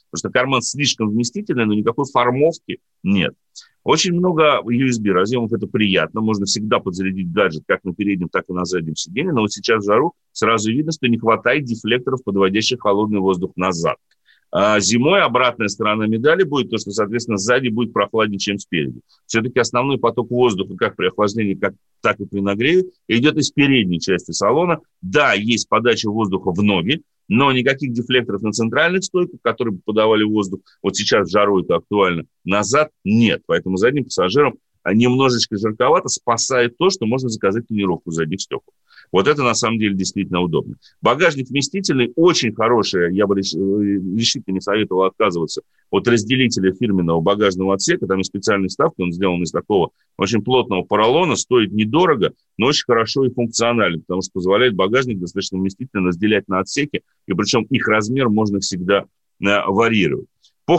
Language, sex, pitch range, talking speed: Russian, male, 95-125 Hz, 160 wpm